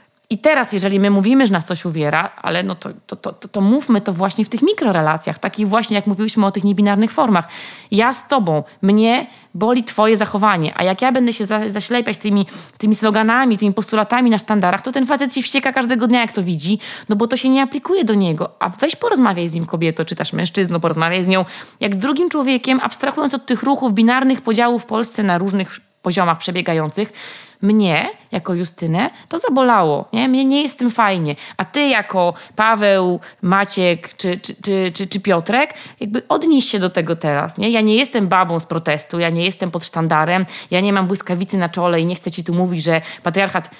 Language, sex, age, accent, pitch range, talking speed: Polish, female, 20-39, native, 180-235 Hz, 205 wpm